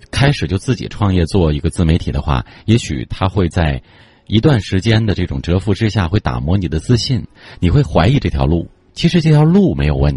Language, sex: Chinese, male